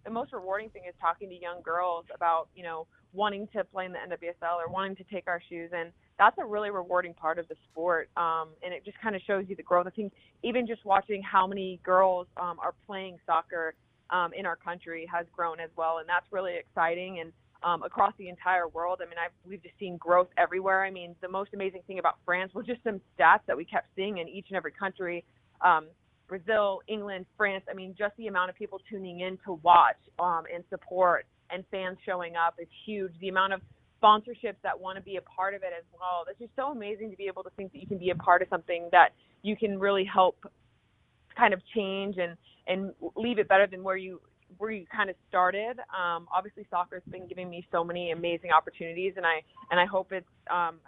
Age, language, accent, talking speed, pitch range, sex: 30-49, English, American, 230 wpm, 170-195 Hz, female